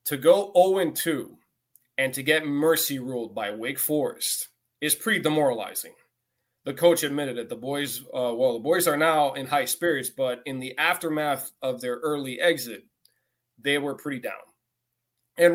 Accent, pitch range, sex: American, 130-170 Hz, male